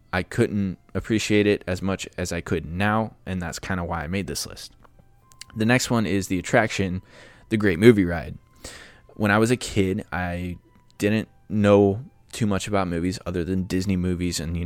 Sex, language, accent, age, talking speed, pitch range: male, English, American, 20-39, 190 wpm, 90-105 Hz